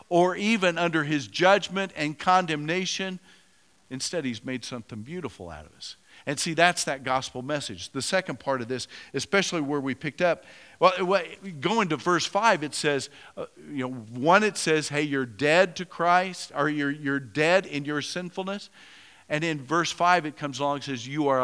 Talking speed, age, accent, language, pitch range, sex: 180 wpm, 50-69, American, English, 135-180 Hz, male